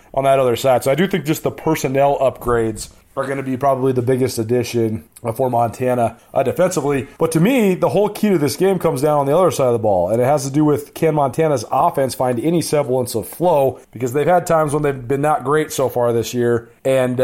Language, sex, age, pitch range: English, male, 30-49, 130-165 Hz